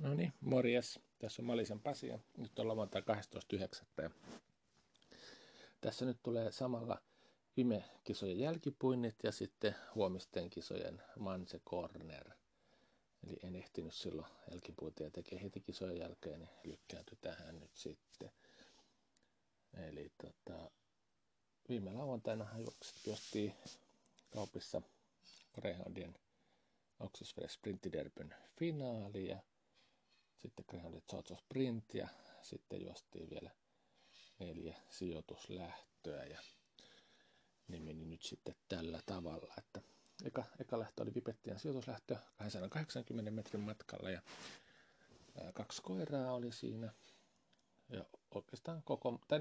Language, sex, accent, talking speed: Finnish, male, native, 105 wpm